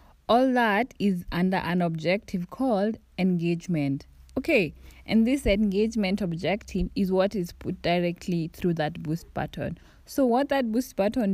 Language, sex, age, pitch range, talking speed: English, female, 20-39, 165-200 Hz, 145 wpm